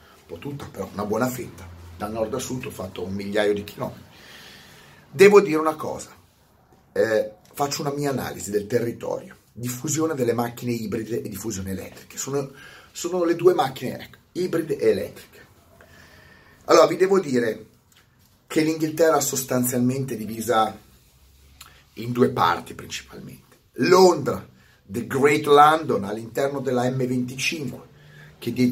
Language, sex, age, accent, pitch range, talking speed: Italian, male, 30-49, native, 110-150 Hz, 135 wpm